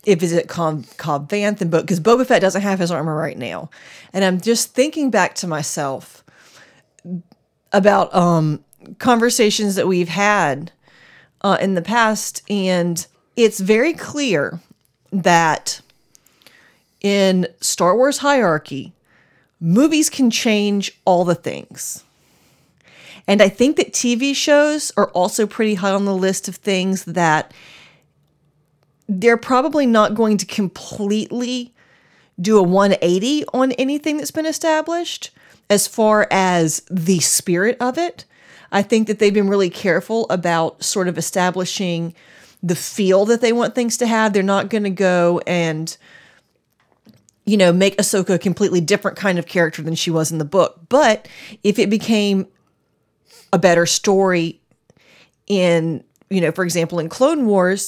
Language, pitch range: English, 170-220 Hz